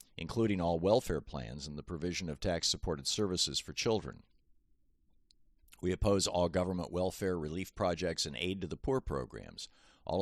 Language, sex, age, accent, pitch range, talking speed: English, male, 50-69, American, 75-95 Hz, 155 wpm